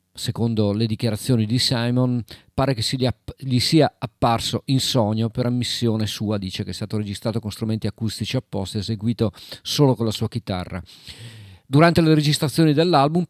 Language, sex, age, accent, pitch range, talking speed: Italian, male, 40-59, native, 105-125 Hz, 165 wpm